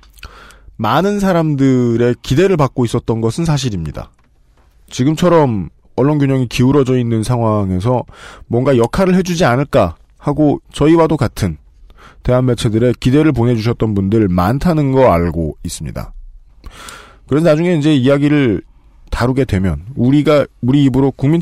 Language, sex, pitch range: Korean, male, 100-150 Hz